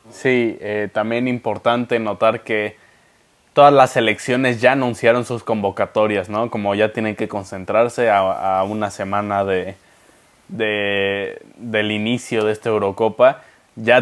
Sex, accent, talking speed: male, Mexican, 135 wpm